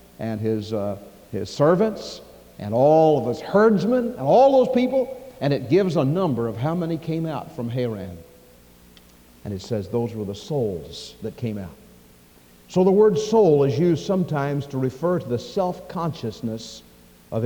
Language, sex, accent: English, male, American